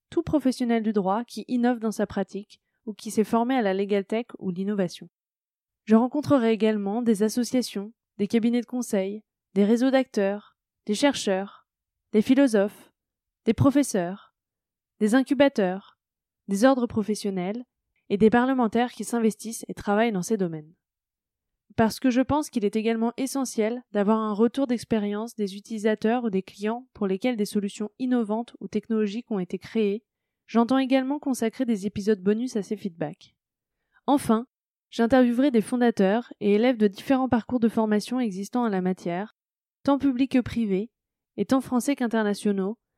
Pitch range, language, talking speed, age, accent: 205-245 Hz, French, 155 wpm, 20-39, French